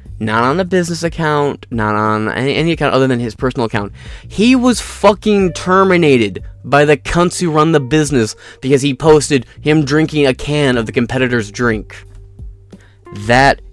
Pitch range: 100-145 Hz